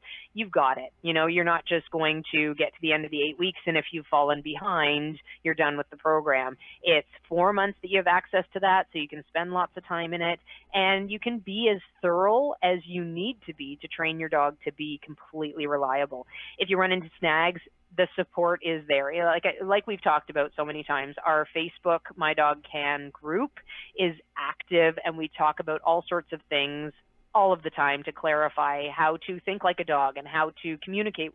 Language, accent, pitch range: English, American, 150-190 Hz